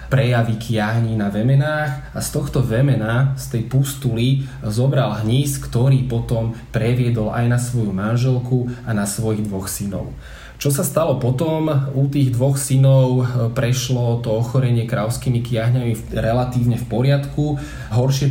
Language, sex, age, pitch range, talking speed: Slovak, male, 20-39, 115-130 Hz, 140 wpm